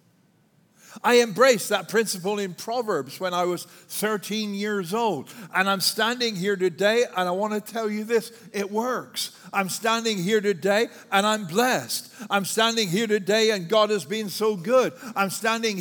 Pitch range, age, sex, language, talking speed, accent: 180-215 Hz, 60-79, male, English, 170 wpm, American